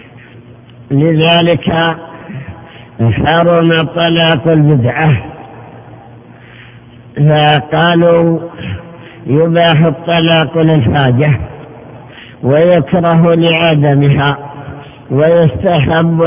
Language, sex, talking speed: Arabic, male, 40 wpm